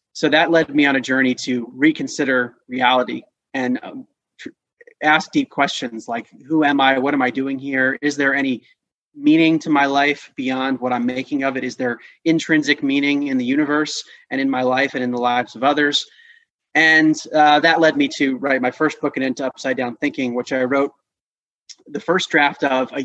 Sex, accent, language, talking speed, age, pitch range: male, American, English, 200 wpm, 30-49, 130-165 Hz